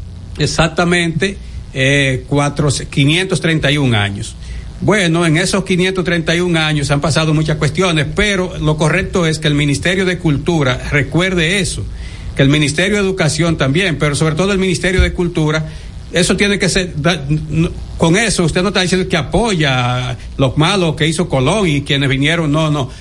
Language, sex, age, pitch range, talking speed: Spanish, male, 60-79, 145-180 Hz, 165 wpm